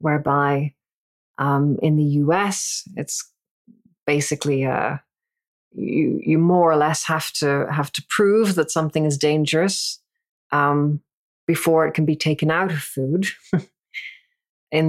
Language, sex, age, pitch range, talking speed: English, female, 40-59, 150-185 Hz, 130 wpm